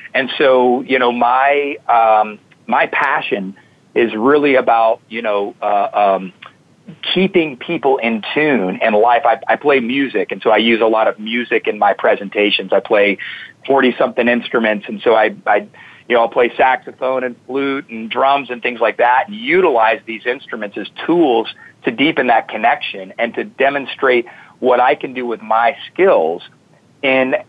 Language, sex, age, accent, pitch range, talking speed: English, male, 40-59, American, 115-150 Hz, 170 wpm